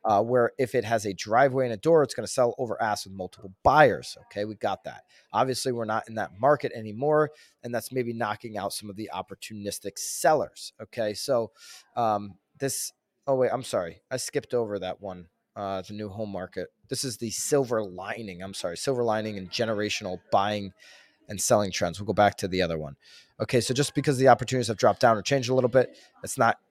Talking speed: 215 wpm